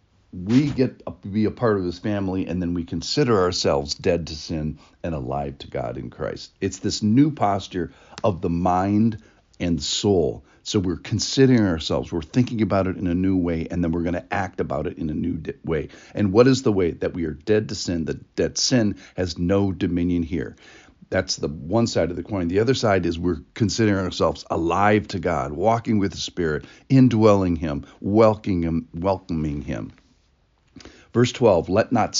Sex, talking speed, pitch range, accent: male, 190 wpm, 85-115 Hz, American